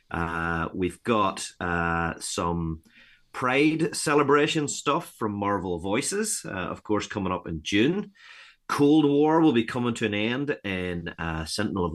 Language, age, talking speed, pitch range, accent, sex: English, 30-49, 150 wpm, 85-105 Hz, British, male